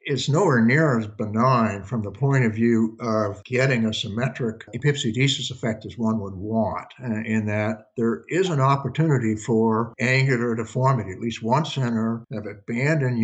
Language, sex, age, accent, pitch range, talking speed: English, male, 60-79, American, 110-130 Hz, 160 wpm